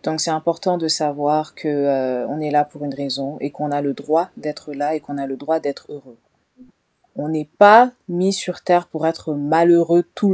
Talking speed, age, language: 215 wpm, 30-49, French